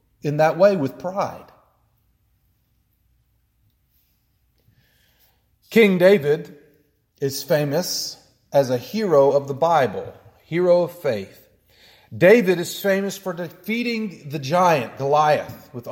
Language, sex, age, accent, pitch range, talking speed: English, male, 40-59, American, 120-185 Hz, 100 wpm